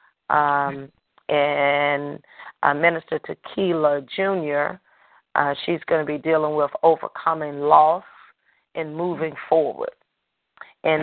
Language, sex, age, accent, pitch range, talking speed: English, female, 40-59, American, 145-165 Hz, 105 wpm